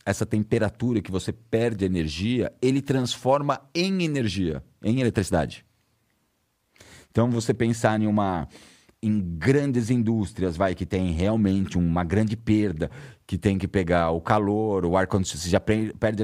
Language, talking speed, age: Portuguese, 145 wpm, 40-59